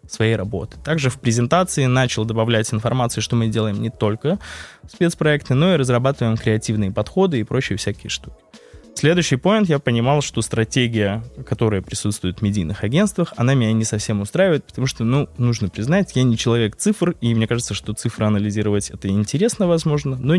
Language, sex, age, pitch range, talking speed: Russian, male, 20-39, 105-125 Hz, 170 wpm